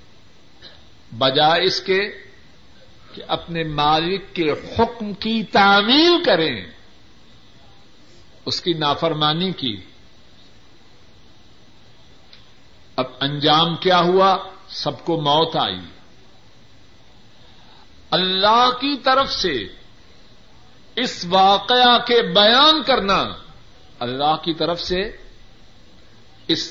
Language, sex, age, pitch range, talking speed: Urdu, male, 50-69, 120-200 Hz, 85 wpm